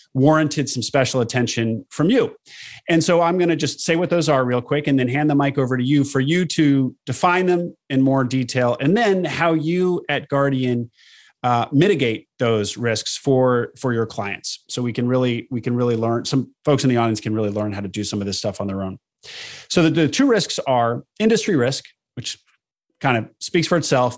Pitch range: 115-150 Hz